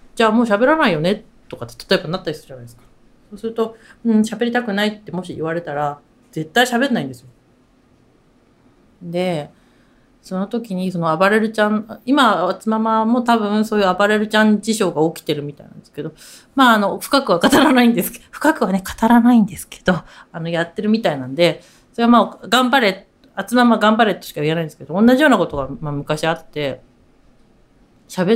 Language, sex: Japanese, female